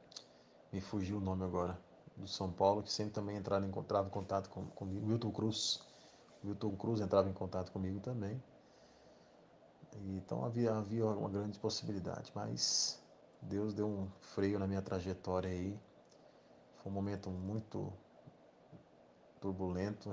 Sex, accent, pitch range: male, Brazilian, 95-105 Hz